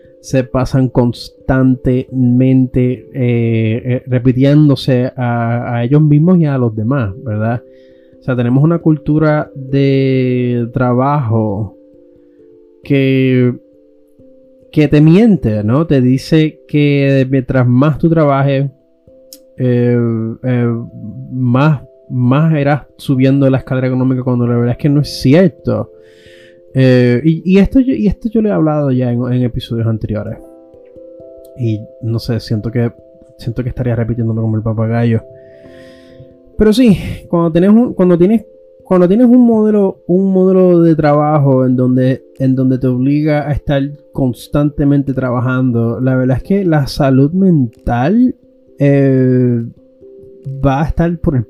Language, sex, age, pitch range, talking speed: Spanish, male, 30-49, 120-150 Hz, 135 wpm